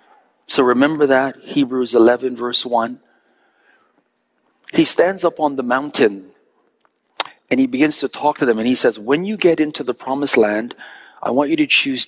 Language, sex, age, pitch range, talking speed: English, male, 40-59, 120-150 Hz, 175 wpm